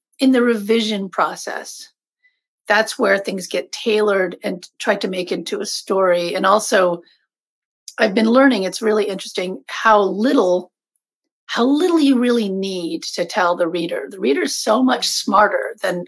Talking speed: 155 wpm